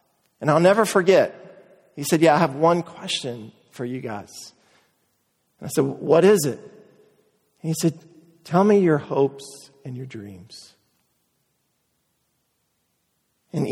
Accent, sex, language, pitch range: American, male, English, 145-175 Hz